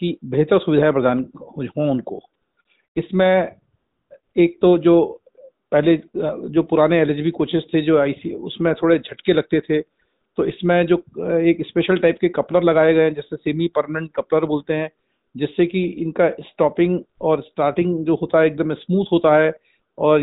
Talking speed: 150 wpm